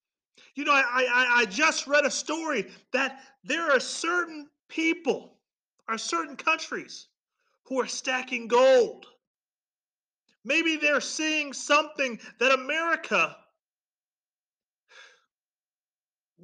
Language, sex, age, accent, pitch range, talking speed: English, male, 40-59, American, 245-310 Hz, 100 wpm